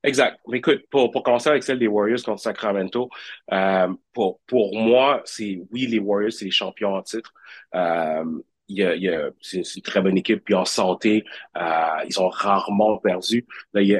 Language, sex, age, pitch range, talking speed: French, male, 30-49, 100-120 Hz, 220 wpm